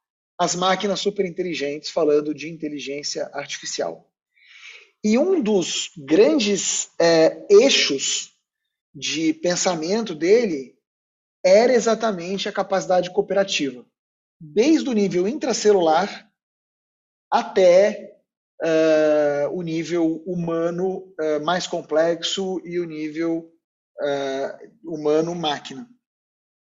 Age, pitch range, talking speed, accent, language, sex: 40-59, 165-210 Hz, 85 wpm, Brazilian, Portuguese, male